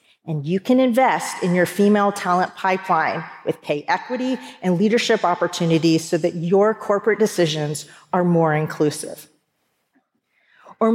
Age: 40-59